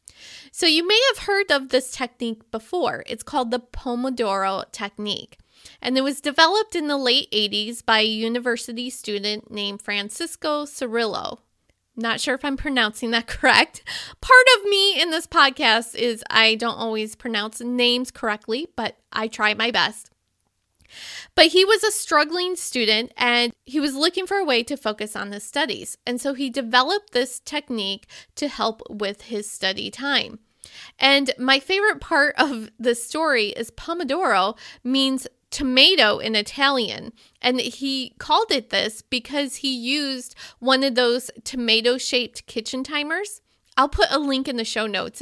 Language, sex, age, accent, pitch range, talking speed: English, female, 20-39, American, 220-290 Hz, 160 wpm